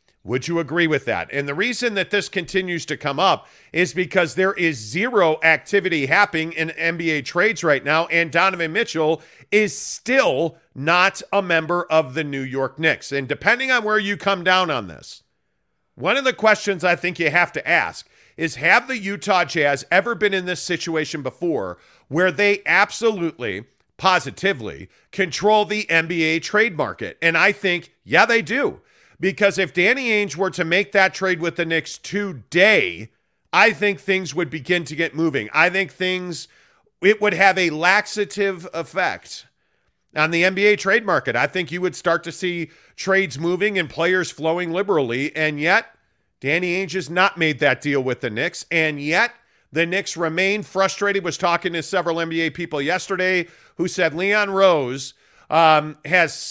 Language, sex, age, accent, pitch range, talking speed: English, male, 50-69, American, 160-195 Hz, 175 wpm